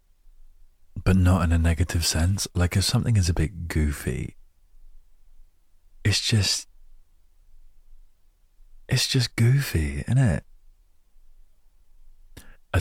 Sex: male